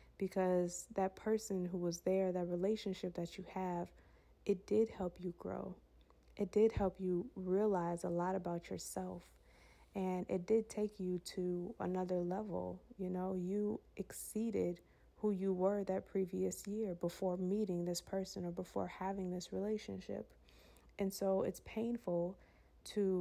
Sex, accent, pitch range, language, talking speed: female, American, 175-195 Hz, English, 145 wpm